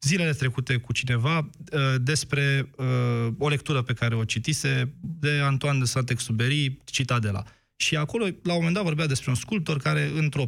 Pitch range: 115-150 Hz